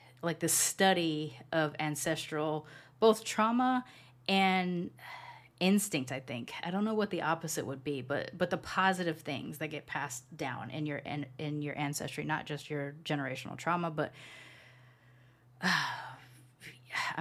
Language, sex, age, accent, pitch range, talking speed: English, female, 20-39, American, 140-175 Hz, 145 wpm